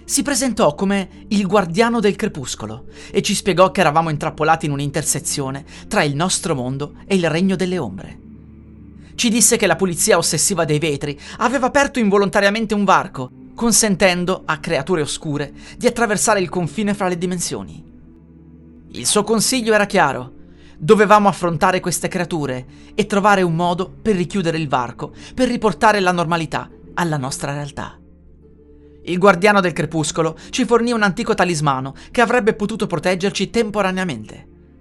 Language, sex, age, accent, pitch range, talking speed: Italian, male, 30-49, native, 130-200 Hz, 150 wpm